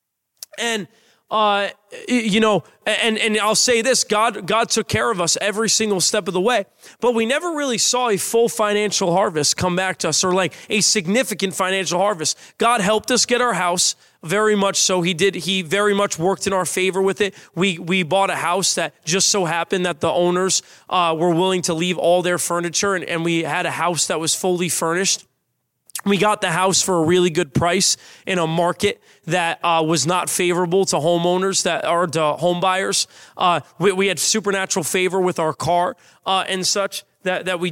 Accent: American